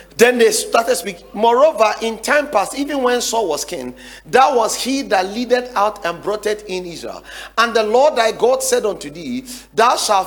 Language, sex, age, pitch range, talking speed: English, male, 40-59, 200-290 Hz, 200 wpm